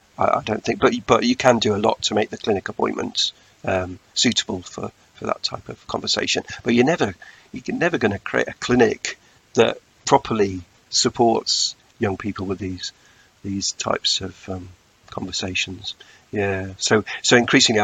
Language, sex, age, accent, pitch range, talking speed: English, male, 50-69, British, 95-105 Hz, 165 wpm